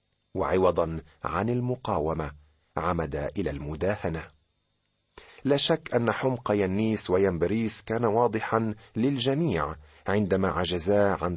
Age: 40-59